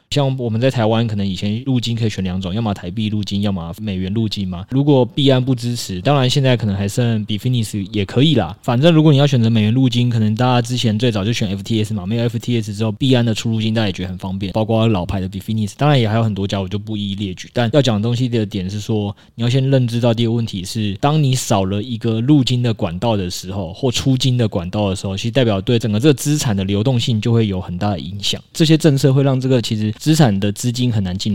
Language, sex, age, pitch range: Chinese, male, 20-39, 105-130 Hz